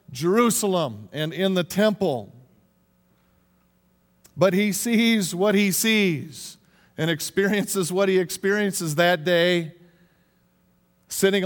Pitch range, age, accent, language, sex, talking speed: 155-195 Hz, 50-69, American, English, male, 100 wpm